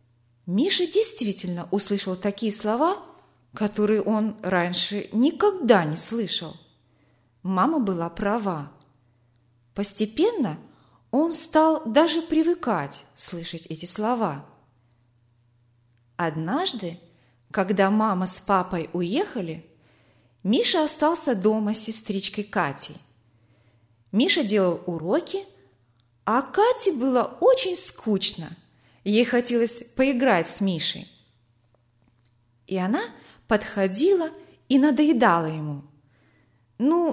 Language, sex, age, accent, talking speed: Russian, female, 30-49, native, 85 wpm